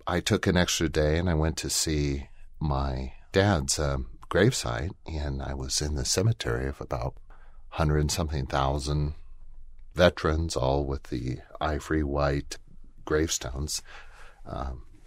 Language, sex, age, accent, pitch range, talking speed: English, male, 40-59, American, 70-80 Hz, 125 wpm